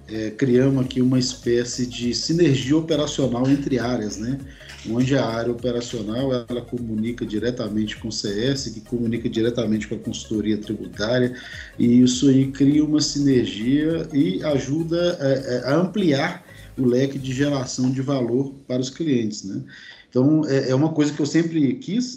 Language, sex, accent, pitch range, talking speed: Portuguese, male, Brazilian, 110-145 Hz, 150 wpm